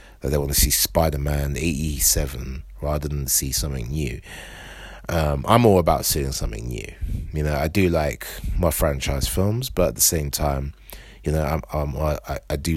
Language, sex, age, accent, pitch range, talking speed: English, male, 30-49, British, 70-80 Hz, 185 wpm